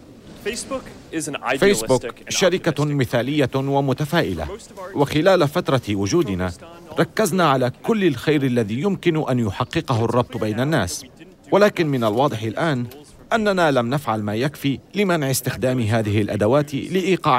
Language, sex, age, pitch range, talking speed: Arabic, male, 40-59, 105-150 Hz, 110 wpm